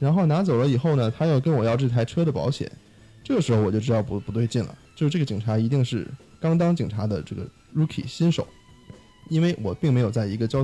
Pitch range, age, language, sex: 110-150 Hz, 20-39, Chinese, male